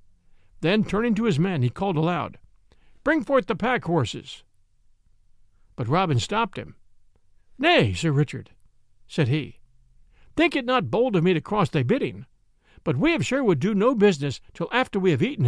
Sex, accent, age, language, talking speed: male, American, 60-79, English, 170 wpm